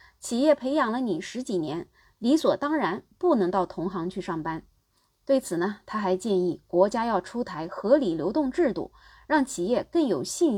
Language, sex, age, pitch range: Chinese, female, 20-39, 185-275 Hz